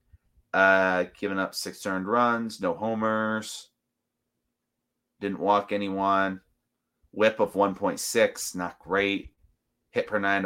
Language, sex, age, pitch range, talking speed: English, male, 30-49, 95-130 Hz, 110 wpm